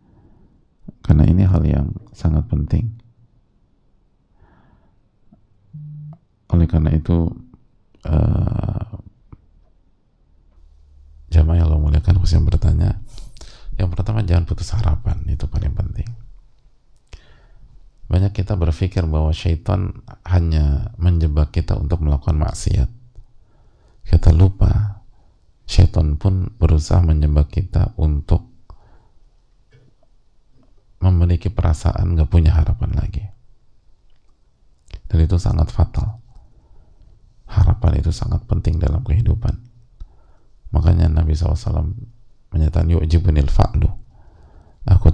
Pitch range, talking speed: 80-100 Hz, 80 wpm